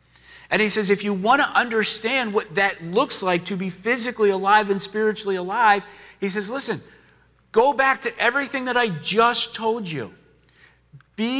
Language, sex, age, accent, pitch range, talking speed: English, male, 40-59, American, 175-220 Hz, 170 wpm